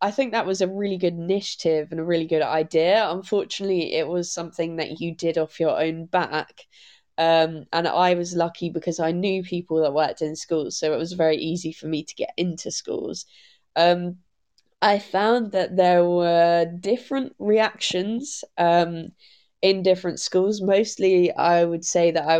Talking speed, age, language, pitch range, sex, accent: 175 wpm, 20-39, English, 165-185 Hz, female, British